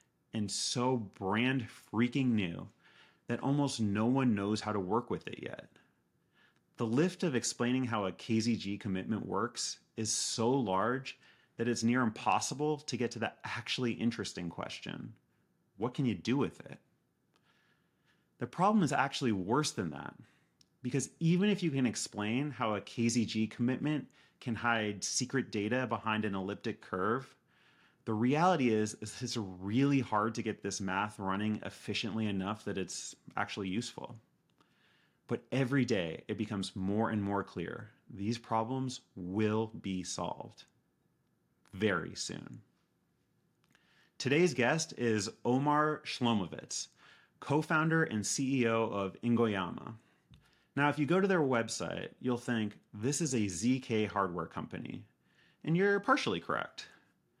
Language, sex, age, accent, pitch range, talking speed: English, male, 30-49, American, 105-130 Hz, 140 wpm